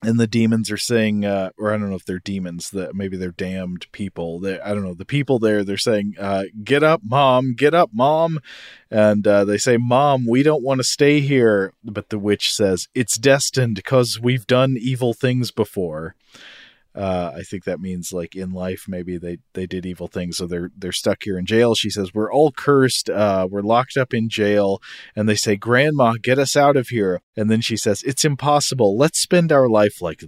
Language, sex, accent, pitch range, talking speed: English, male, American, 95-130 Hz, 215 wpm